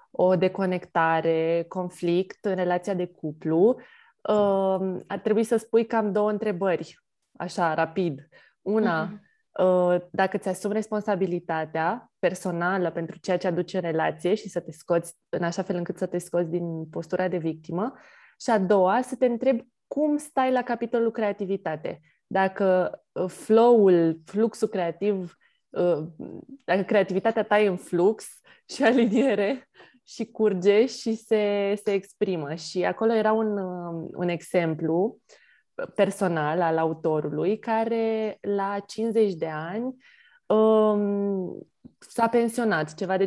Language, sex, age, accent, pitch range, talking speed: Romanian, female, 20-39, native, 175-225 Hz, 125 wpm